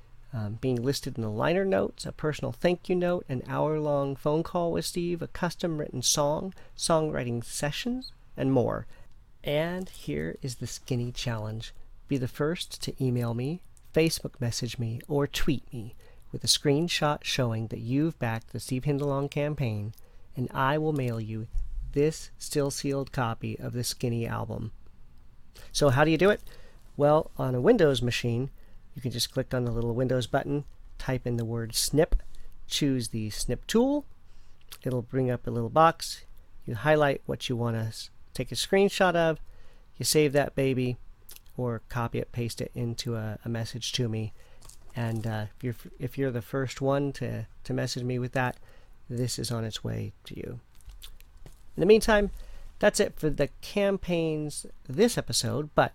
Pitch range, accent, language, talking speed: 115-150 Hz, American, English, 170 wpm